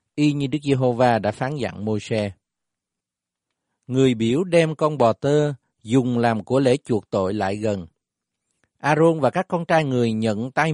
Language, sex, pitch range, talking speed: Vietnamese, male, 110-155 Hz, 170 wpm